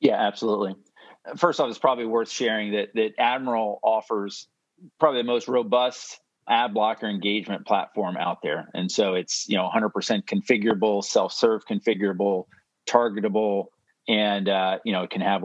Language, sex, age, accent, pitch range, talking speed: English, male, 40-59, American, 100-115 Hz, 150 wpm